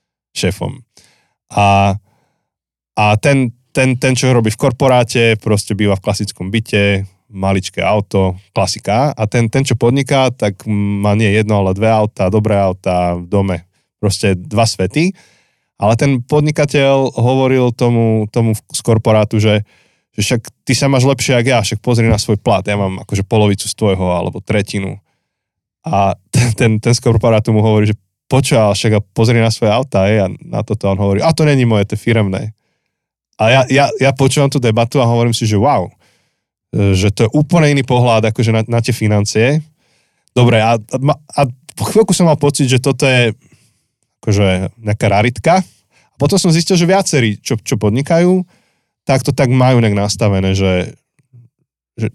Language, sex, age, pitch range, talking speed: Slovak, male, 20-39, 105-130 Hz, 170 wpm